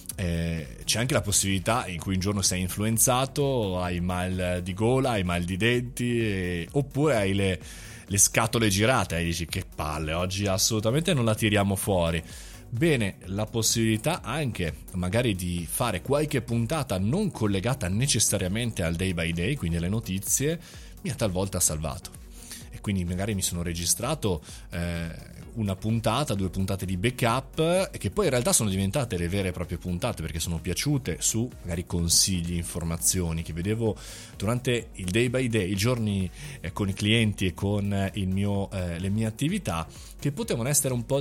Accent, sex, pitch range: native, male, 90-115 Hz